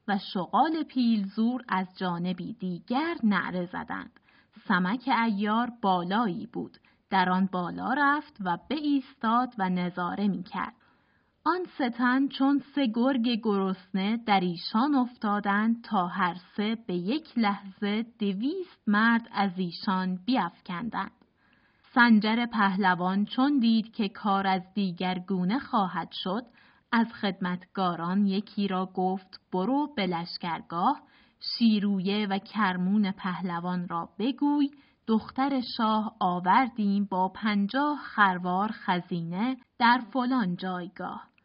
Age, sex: 30-49, female